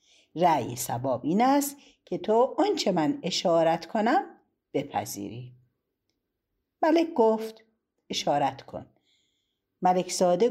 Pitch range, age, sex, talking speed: 160-255 Hz, 60-79, female, 90 wpm